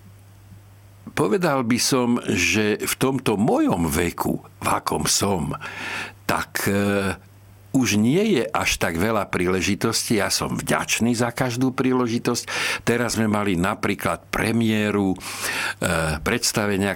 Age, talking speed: 60-79, 110 wpm